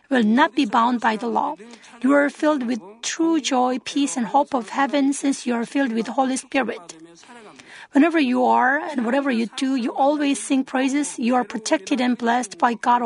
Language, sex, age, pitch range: Korean, female, 40-59, 245-285 Hz